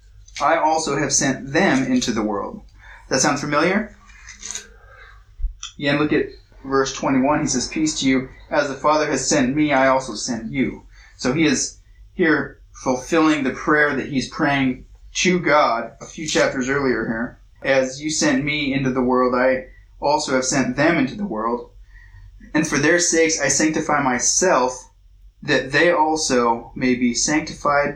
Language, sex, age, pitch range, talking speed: English, male, 20-39, 120-155 Hz, 165 wpm